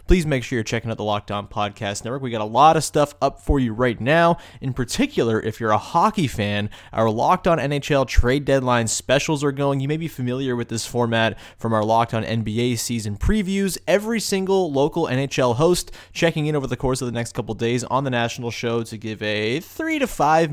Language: English